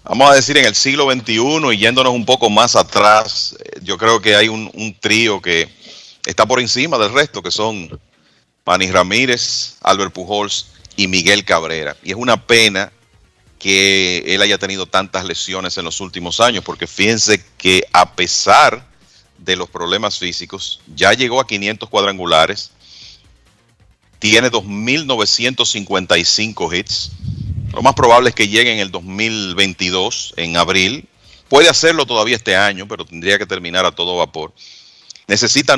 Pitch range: 90-115 Hz